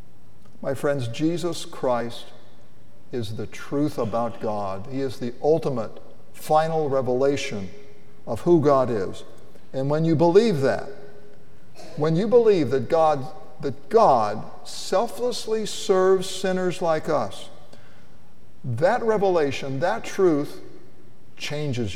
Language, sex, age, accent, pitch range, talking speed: English, male, 50-69, American, 115-160 Hz, 110 wpm